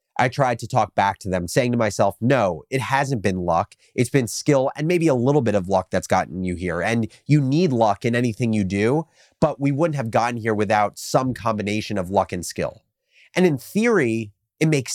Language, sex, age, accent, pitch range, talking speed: English, male, 30-49, American, 105-145 Hz, 220 wpm